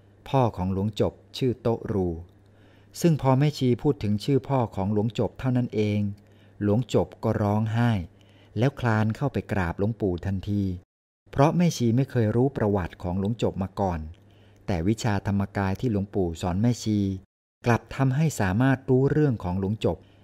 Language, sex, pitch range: Thai, male, 95-120 Hz